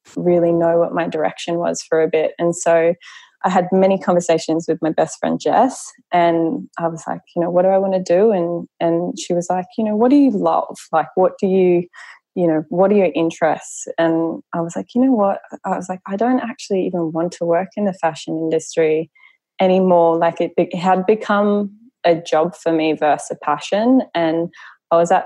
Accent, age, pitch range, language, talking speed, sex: Australian, 20-39, 160-185 Hz, English, 215 wpm, female